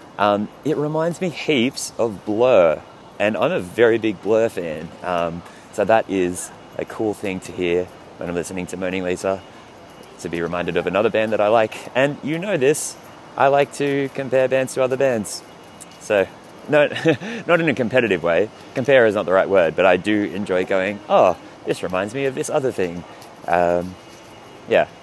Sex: male